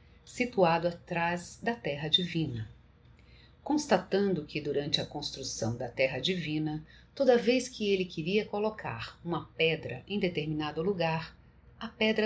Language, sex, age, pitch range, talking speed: Portuguese, female, 40-59, 145-215 Hz, 125 wpm